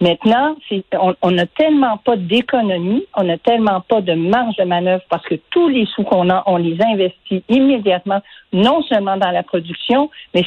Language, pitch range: French, 185-250 Hz